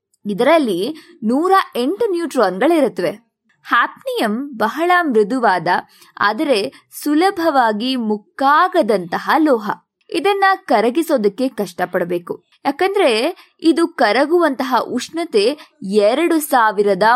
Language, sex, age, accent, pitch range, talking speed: Kannada, female, 20-39, native, 215-315 Hz, 75 wpm